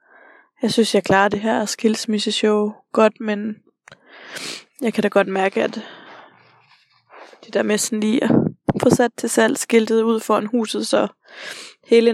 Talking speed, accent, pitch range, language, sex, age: 155 wpm, native, 225-345 Hz, Danish, female, 20-39